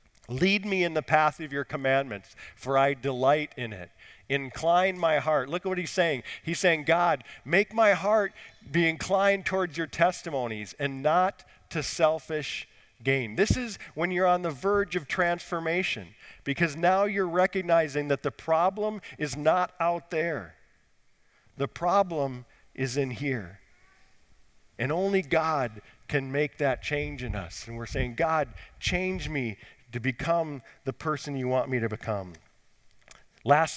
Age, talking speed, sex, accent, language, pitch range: 50-69, 155 wpm, male, American, English, 120-170 Hz